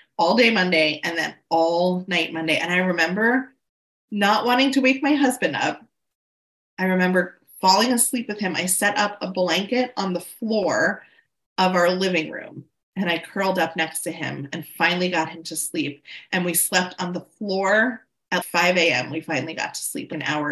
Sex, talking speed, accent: female, 190 wpm, American